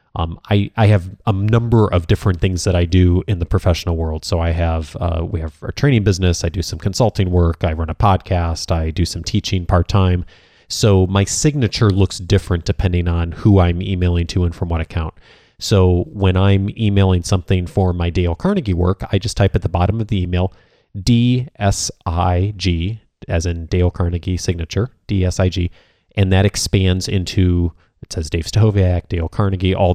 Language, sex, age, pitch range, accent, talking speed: English, male, 30-49, 90-105 Hz, American, 185 wpm